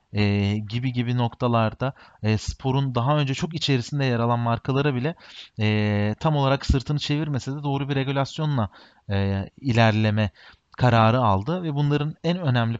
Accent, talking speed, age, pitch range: native, 145 wpm, 30-49, 110-145 Hz